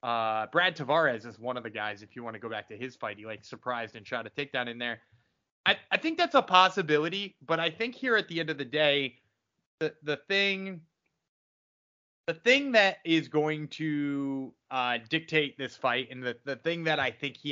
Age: 30-49